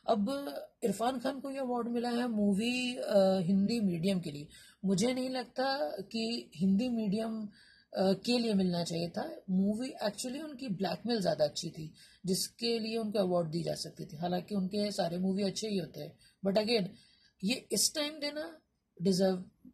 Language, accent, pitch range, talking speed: Hindi, native, 185-230 Hz, 165 wpm